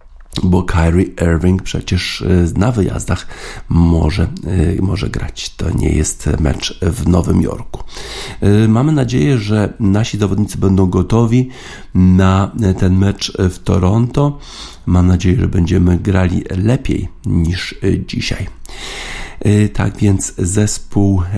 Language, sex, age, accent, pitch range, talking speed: Polish, male, 50-69, native, 90-105 Hz, 110 wpm